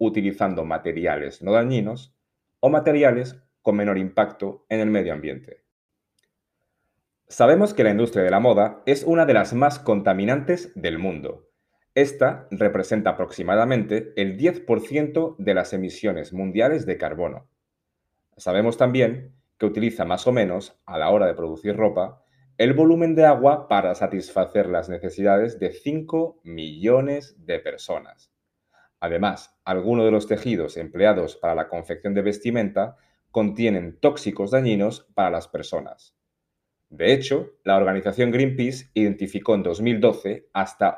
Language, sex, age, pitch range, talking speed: Spanish, male, 30-49, 105-140 Hz, 135 wpm